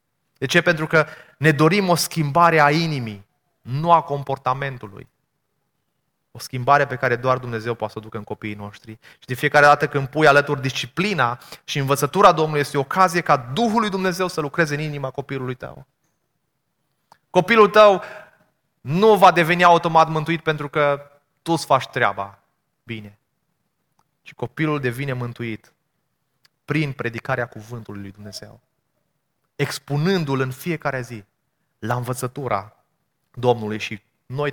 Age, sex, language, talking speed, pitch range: 20-39, male, Romanian, 140 wpm, 120-155 Hz